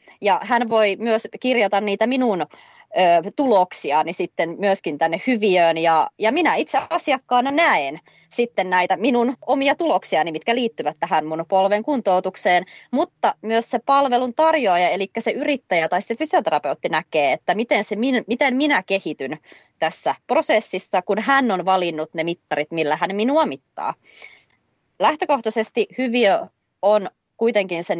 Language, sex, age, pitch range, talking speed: Finnish, female, 30-49, 180-260 Hz, 135 wpm